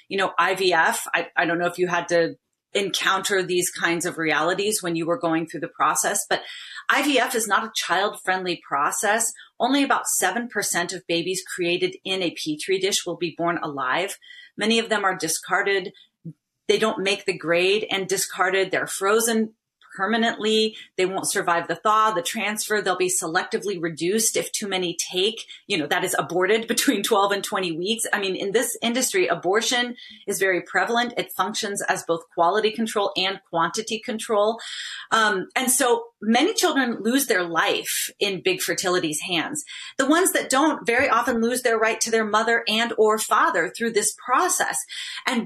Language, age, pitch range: English, 30-49, 185-245 Hz